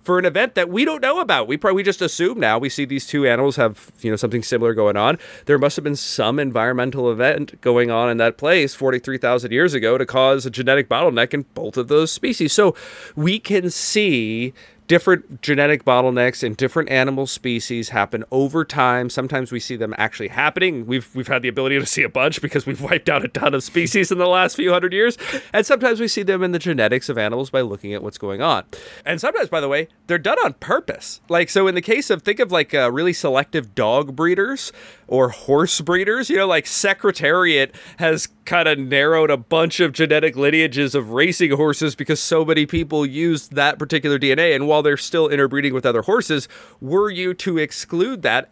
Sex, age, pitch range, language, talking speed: male, 30-49, 125-175 Hz, English, 215 wpm